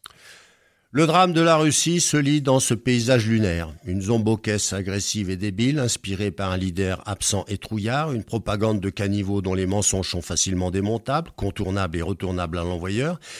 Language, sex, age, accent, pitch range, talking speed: French, male, 50-69, French, 95-125 Hz, 170 wpm